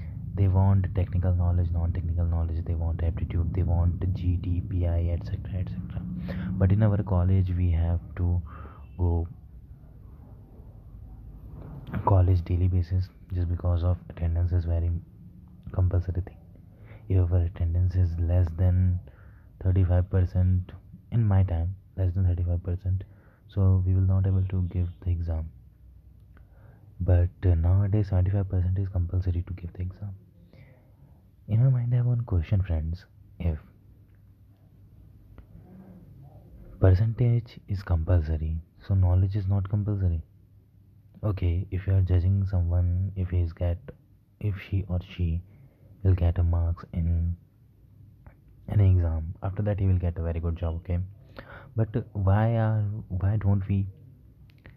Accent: Indian